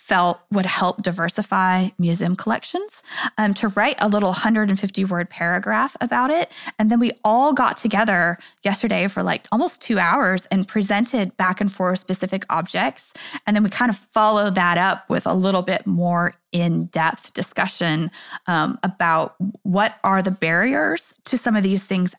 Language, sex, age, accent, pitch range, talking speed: English, female, 20-39, American, 185-230 Hz, 160 wpm